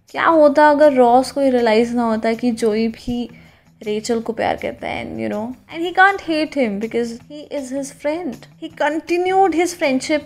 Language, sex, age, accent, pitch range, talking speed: Hindi, female, 20-39, native, 250-315 Hz, 185 wpm